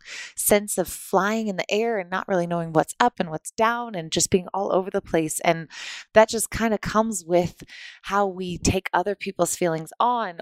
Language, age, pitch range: English, 20-39, 170-205 Hz